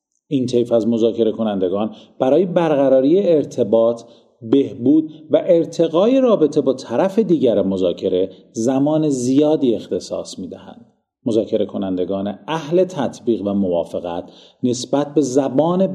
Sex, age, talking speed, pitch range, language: male, 40-59, 110 wpm, 115-165 Hz, Persian